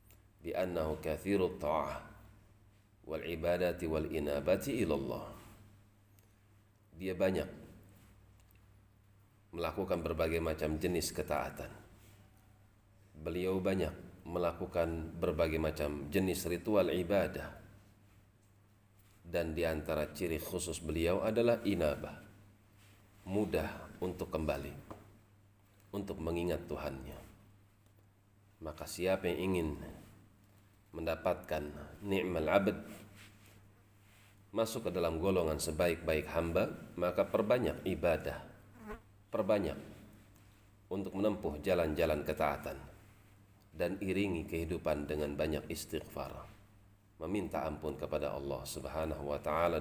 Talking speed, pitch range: 75 wpm, 80-100 Hz